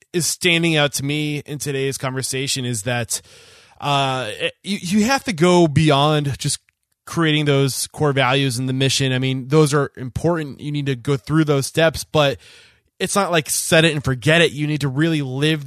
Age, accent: 20-39, American